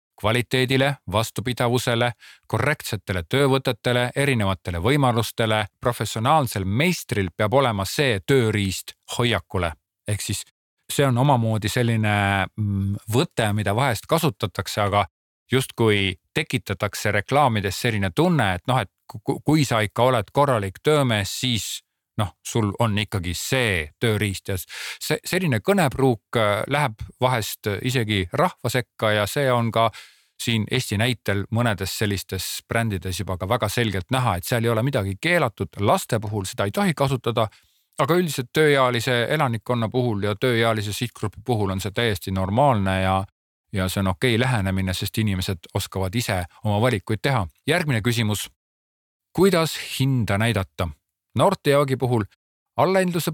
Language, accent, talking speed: Czech, Finnish, 130 wpm